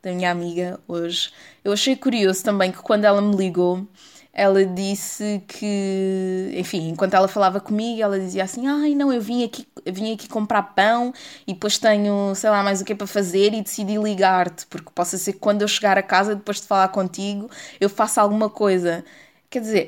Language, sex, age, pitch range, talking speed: Portuguese, female, 20-39, 190-245 Hz, 195 wpm